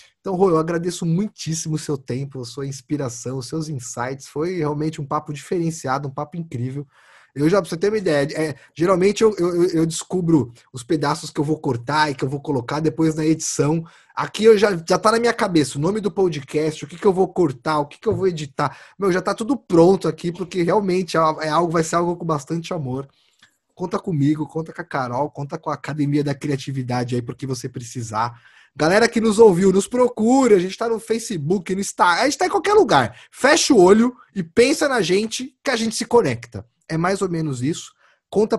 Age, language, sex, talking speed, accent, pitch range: 20-39, Portuguese, male, 220 wpm, Brazilian, 150-205 Hz